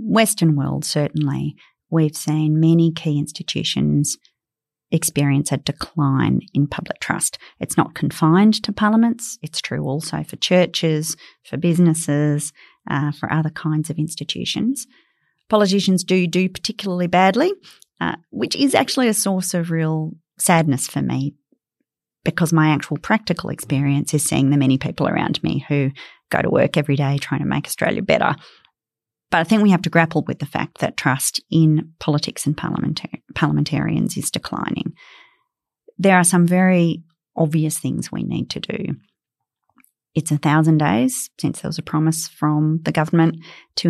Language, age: English, 40-59